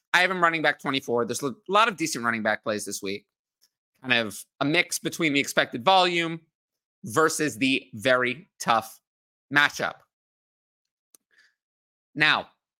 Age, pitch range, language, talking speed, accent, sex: 30-49, 125-200 Hz, English, 140 wpm, American, male